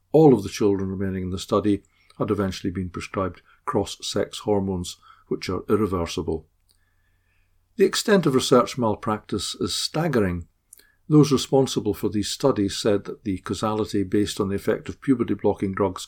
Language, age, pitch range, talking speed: English, 60-79, 95-120 Hz, 155 wpm